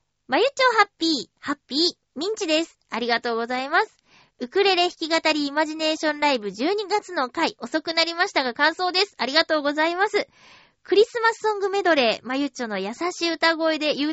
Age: 20-39